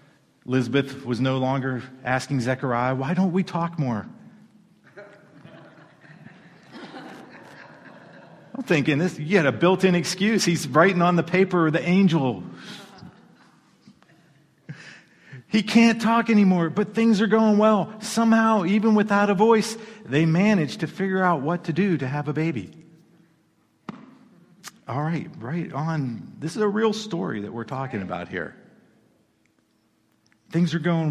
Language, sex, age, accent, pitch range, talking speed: English, male, 50-69, American, 130-185 Hz, 130 wpm